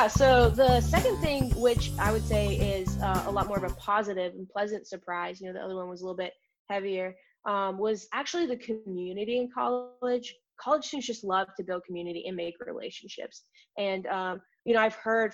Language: English